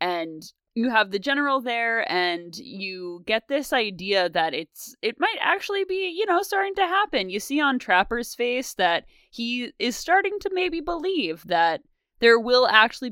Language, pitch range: English, 180-270 Hz